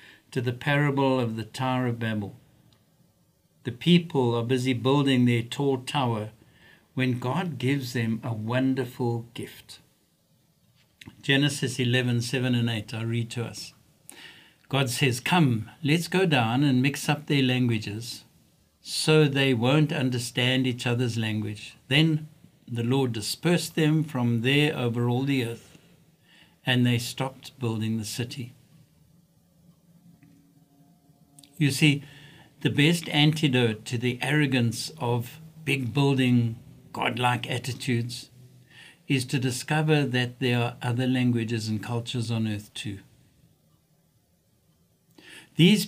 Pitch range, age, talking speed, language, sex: 120-145 Hz, 60-79, 125 wpm, English, male